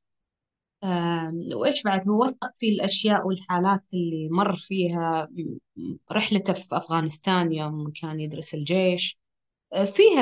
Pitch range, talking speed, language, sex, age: 175-230 Hz, 100 wpm, Arabic, female, 20-39